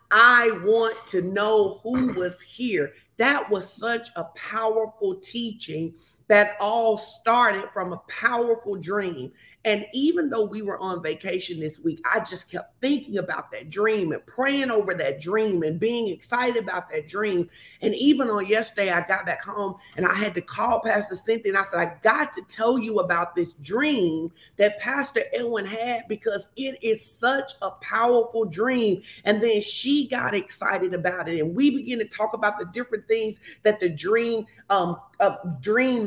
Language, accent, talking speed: English, American, 175 wpm